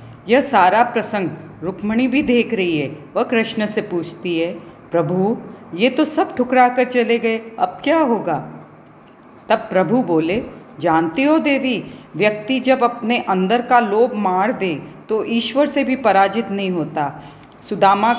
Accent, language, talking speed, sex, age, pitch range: native, Hindi, 150 wpm, female, 40-59, 195-250 Hz